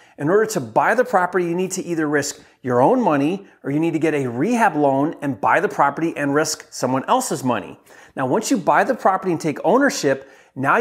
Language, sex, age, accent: English, male, 30-49, American